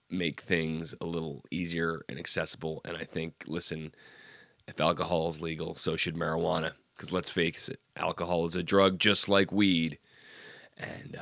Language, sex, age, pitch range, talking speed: English, male, 30-49, 85-100 Hz, 160 wpm